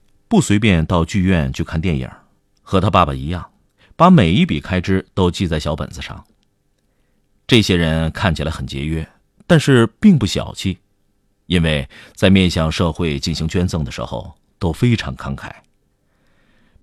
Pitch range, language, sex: 75-100 Hz, Chinese, male